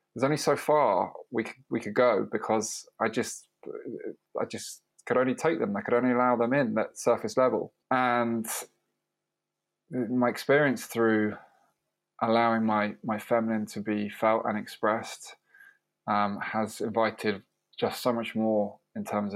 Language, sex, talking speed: English, male, 150 wpm